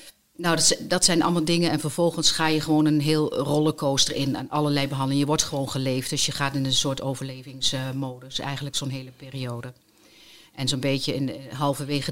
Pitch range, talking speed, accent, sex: 135-160 Hz, 180 wpm, Dutch, female